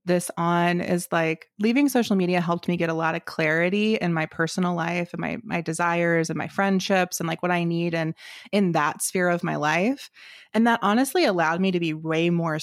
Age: 20-39